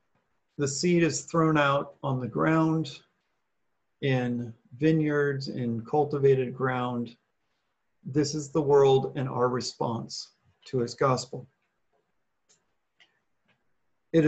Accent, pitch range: American, 125-150 Hz